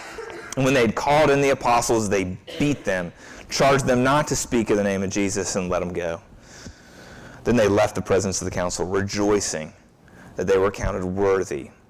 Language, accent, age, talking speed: English, American, 30-49, 195 wpm